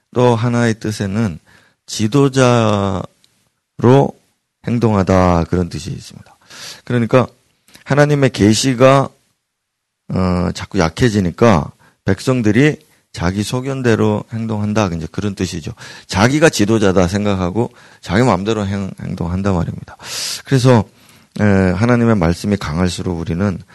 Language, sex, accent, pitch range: Korean, male, native, 95-125 Hz